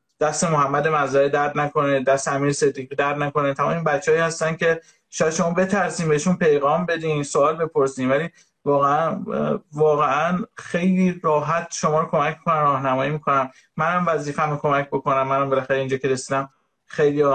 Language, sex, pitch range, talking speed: Persian, male, 145-185 Hz, 150 wpm